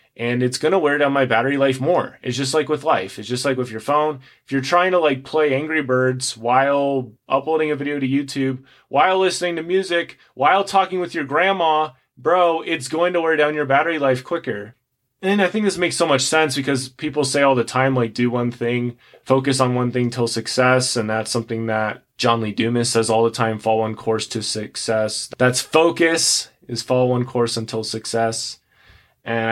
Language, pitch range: English, 110-145 Hz